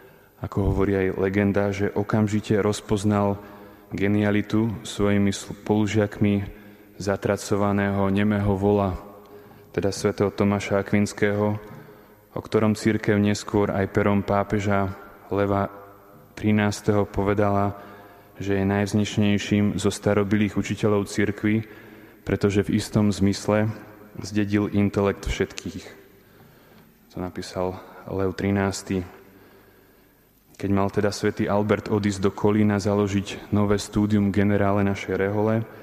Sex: male